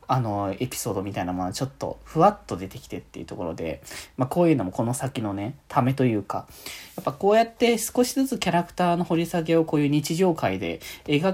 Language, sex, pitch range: Japanese, male, 115-180 Hz